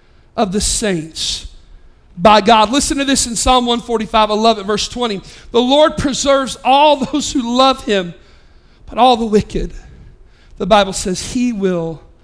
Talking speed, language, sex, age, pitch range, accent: 155 wpm, English, male, 40-59, 200-320 Hz, American